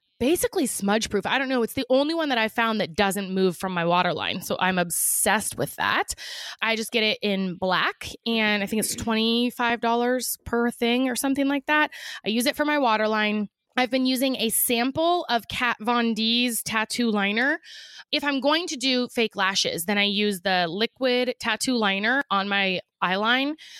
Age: 20-39